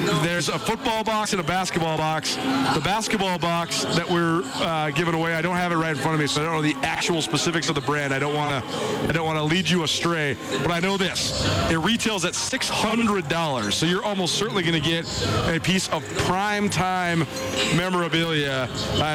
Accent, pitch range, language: American, 160-210 Hz, English